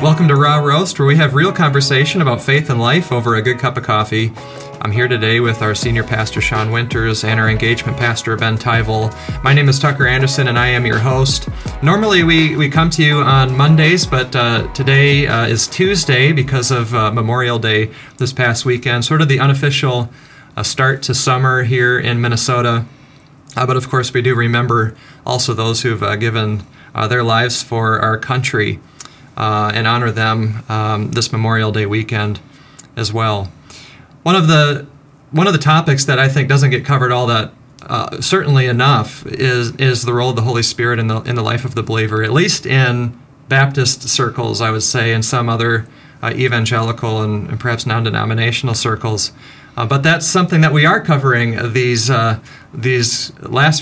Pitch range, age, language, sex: 115-140 Hz, 30-49, English, male